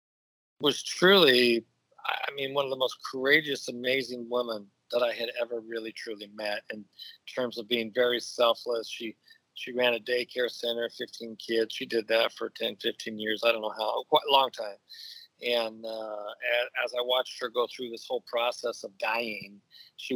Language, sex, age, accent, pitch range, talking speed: English, male, 50-69, American, 115-135 Hz, 185 wpm